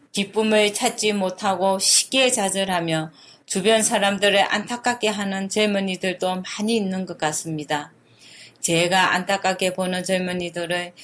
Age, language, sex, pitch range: 30-49, Korean, female, 180-220 Hz